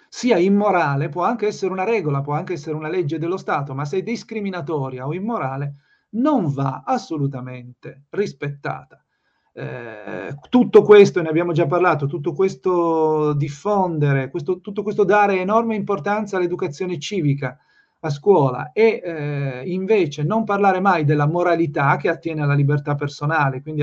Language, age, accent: Italian, 40-59, native